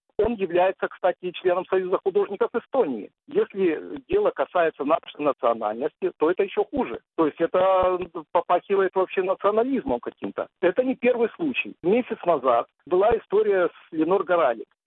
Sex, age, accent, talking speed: male, 50-69, native, 135 wpm